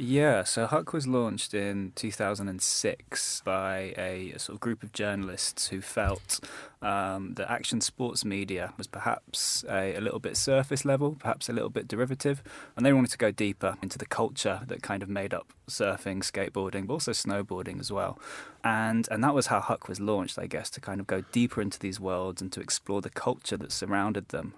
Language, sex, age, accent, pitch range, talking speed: English, male, 20-39, British, 95-115 Hz, 210 wpm